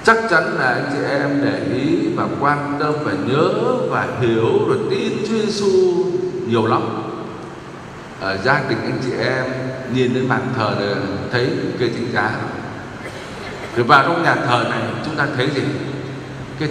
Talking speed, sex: 170 wpm, male